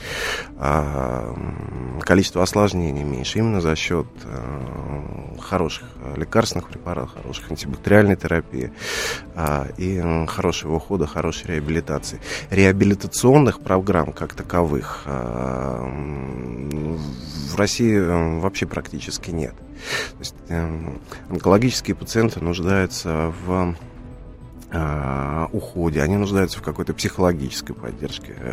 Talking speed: 80 wpm